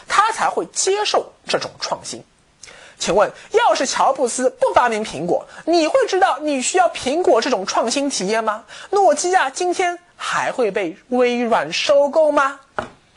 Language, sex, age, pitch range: Chinese, male, 20-39, 255-380 Hz